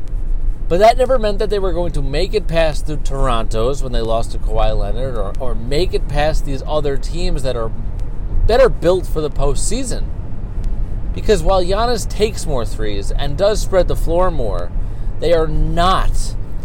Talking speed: 185 wpm